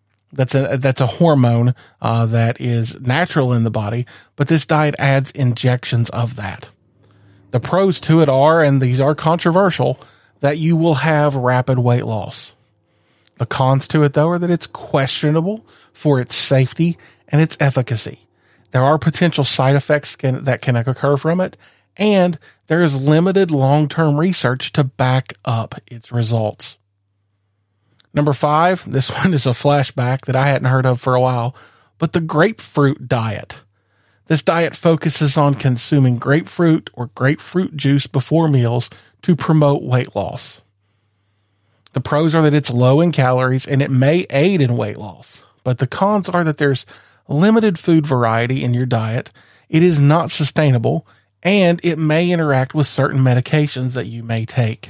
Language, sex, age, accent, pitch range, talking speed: English, male, 40-59, American, 120-155 Hz, 160 wpm